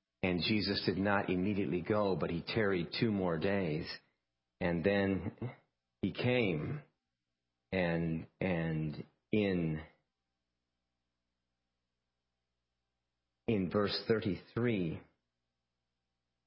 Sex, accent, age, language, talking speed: male, American, 50-69, English, 80 wpm